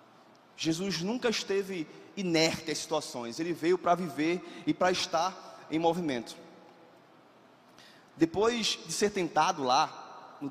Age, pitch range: 20-39, 160-200 Hz